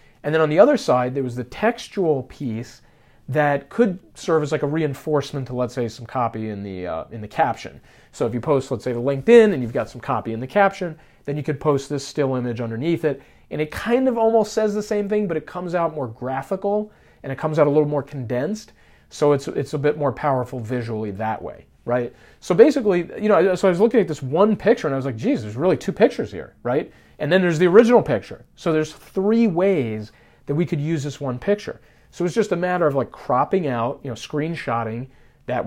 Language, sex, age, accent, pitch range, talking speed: English, male, 40-59, American, 125-180 Hz, 235 wpm